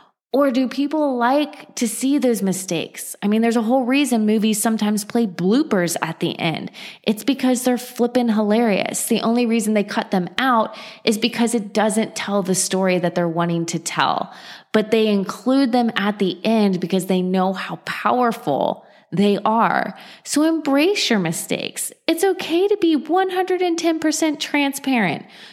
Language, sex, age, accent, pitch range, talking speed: English, female, 20-39, American, 195-265 Hz, 160 wpm